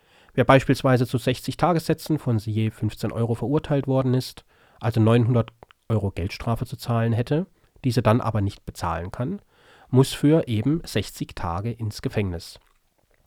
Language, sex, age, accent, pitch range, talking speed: German, male, 40-59, German, 110-140 Hz, 145 wpm